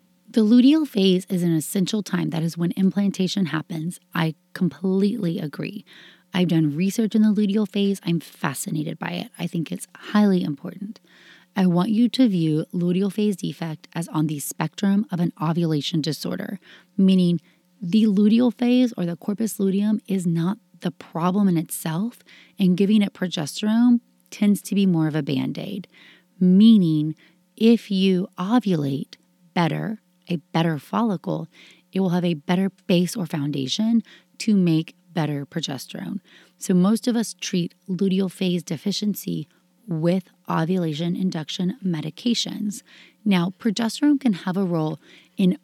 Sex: female